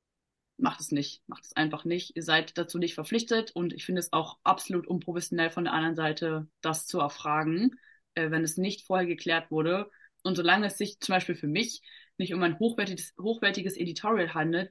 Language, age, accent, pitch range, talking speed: German, 20-39, German, 160-195 Hz, 195 wpm